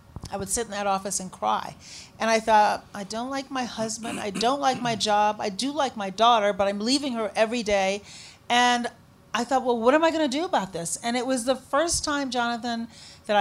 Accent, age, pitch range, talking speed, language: American, 40-59, 205-245 Hz, 235 wpm, English